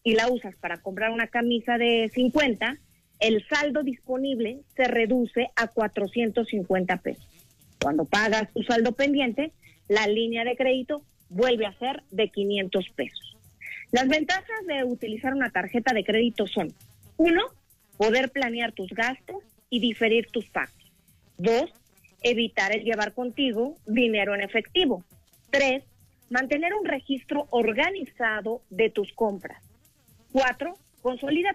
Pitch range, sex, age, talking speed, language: 215-275 Hz, female, 40-59, 130 wpm, Spanish